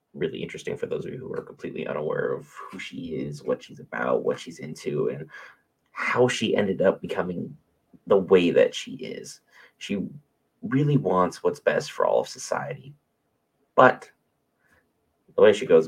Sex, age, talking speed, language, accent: male, 30-49, 170 wpm, English, American